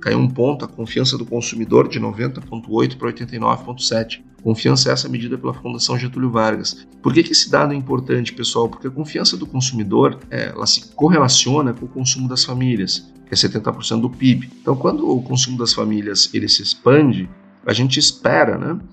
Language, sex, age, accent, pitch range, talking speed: Portuguese, male, 40-59, Brazilian, 110-130 Hz, 180 wpm